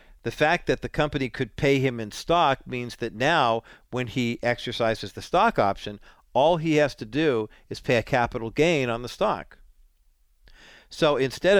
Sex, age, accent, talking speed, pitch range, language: male, 50-69, American, 175 wpm, 110-150 Hz, English